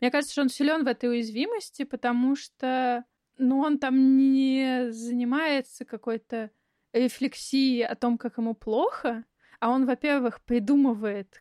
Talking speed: 135 wpm